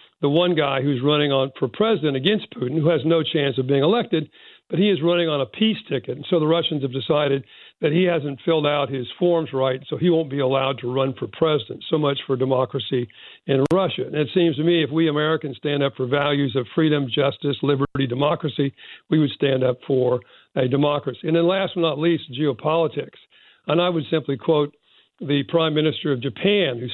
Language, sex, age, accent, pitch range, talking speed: English, male, 60-79, American, 135-165 Hz, 215 wpm